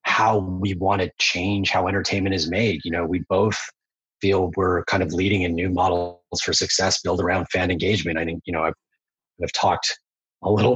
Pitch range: 85-100 Hz